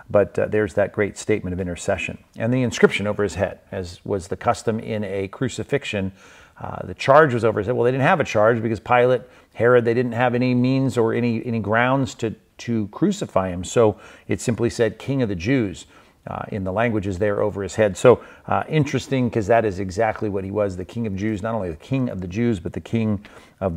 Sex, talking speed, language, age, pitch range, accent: male, 230 wpm, English, 40-59, 110-135 Hz, American